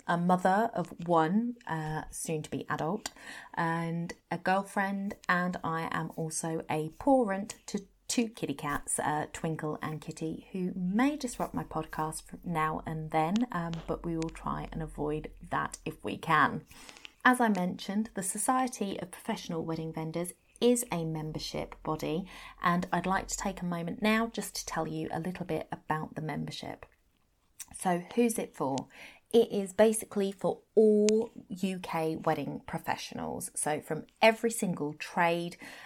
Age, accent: 30-49, British